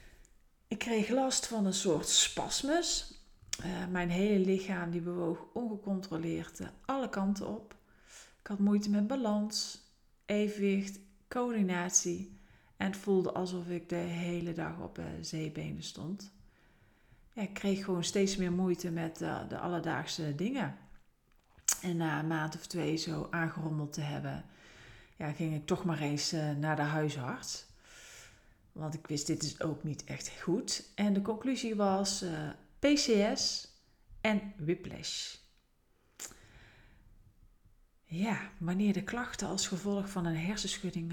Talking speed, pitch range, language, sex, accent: 135 wpm, 155-200 Hz, Dutch, female, Dutch